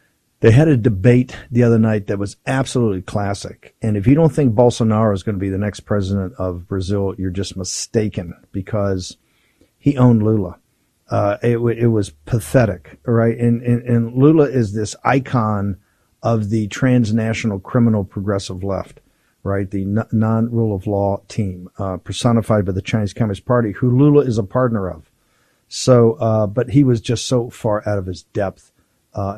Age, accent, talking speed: 50-69, American, 170 wpm